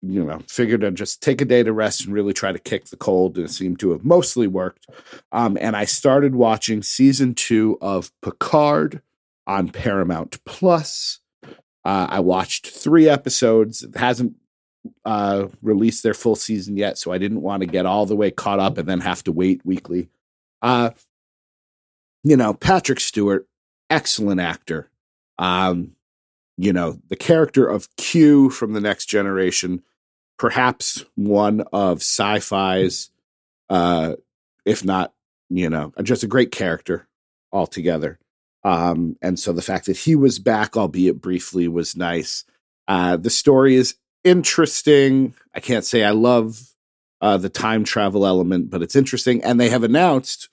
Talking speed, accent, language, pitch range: 160 wpm, American, English, 90-125 Hz